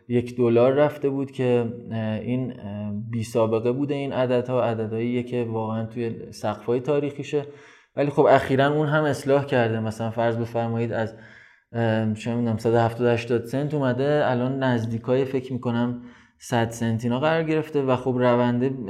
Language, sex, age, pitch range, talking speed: Persian, male, 20-39, 120-145 Hz, 140 wpm